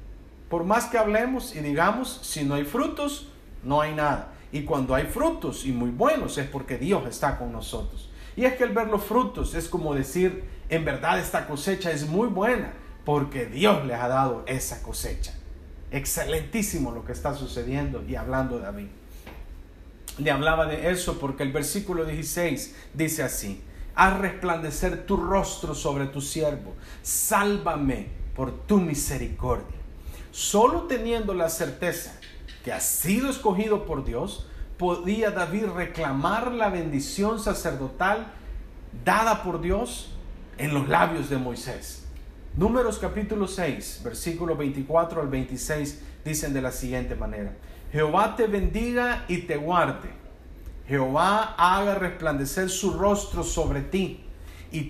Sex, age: male, 40-59